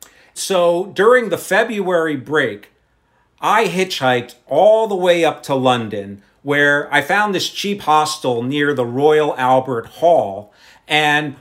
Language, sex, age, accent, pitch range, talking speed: English, male, 50-69, American, 125-205 Hz, 130 wpm